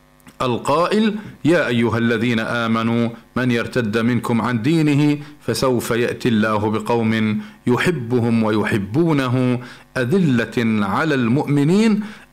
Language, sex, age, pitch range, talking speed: Arabic, male, 50-69, 110-135 Hz, 90 wpm